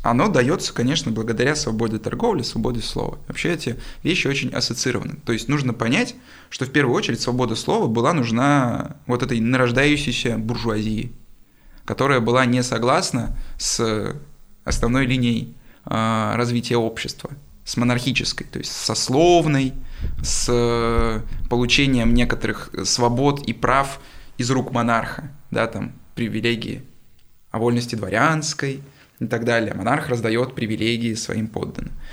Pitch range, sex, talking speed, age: 115-130 Hz, male, 125 wpm, 20-39